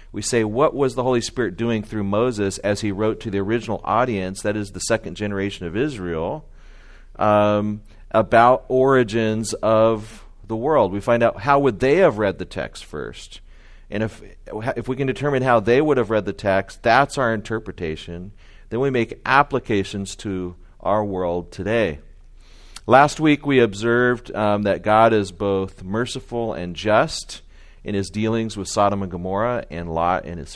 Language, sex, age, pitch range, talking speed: English, male, 40-59, 100-125 Hz, 175 wpm